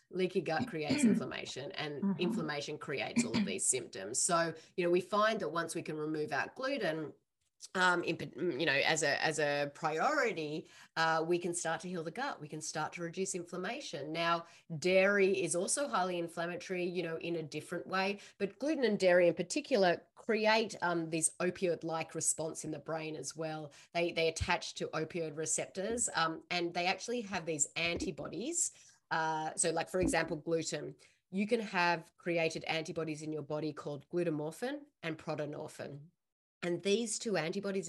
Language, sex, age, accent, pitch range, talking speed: English, female, 30-49, Australian, 160-190 Hz, 170 wpm